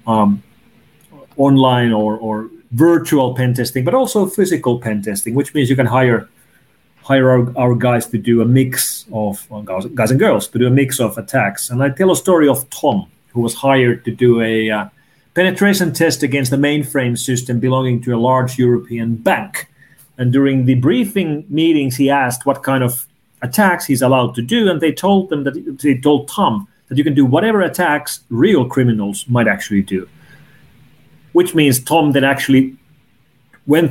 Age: 30-49